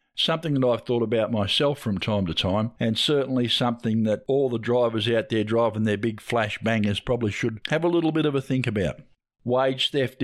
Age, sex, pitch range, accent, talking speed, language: 50-69, male, 105-130 Hz, Australian, 210 wpm, English